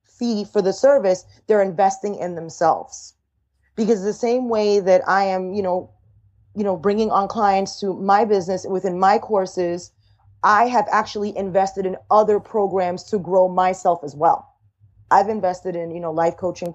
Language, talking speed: English, 170 wpm